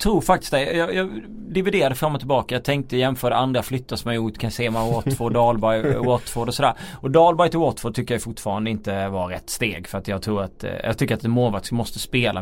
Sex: male